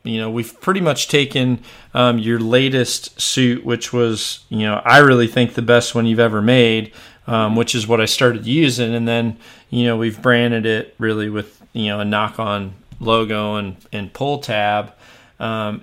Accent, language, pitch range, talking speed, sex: American, English, 115-130 Hz, 185 wpm, male